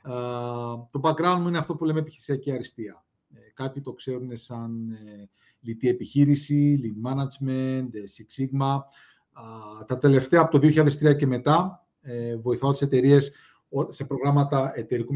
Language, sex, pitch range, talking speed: Greek, male, 125-150 Hz, 150 wpm